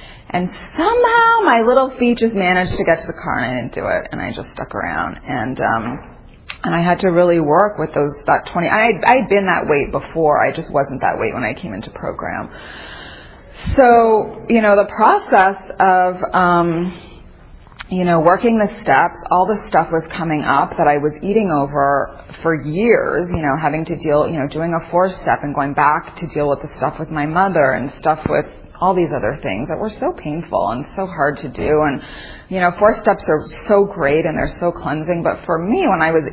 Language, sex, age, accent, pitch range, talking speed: English, female, 30-49, American, 150-190 Hz, 215 wpm